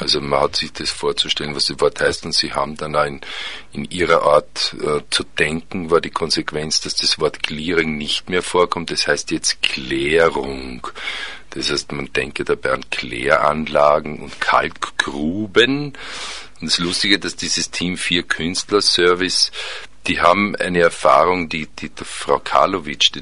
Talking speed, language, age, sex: 165 wpm, German, 50-69, male